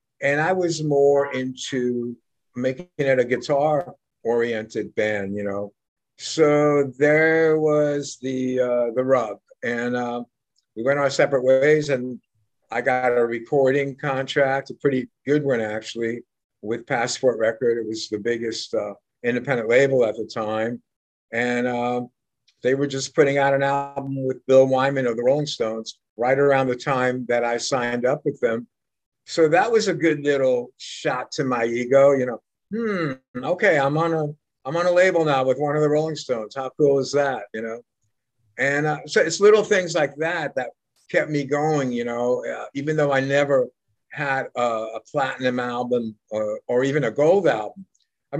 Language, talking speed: English, 175 wpm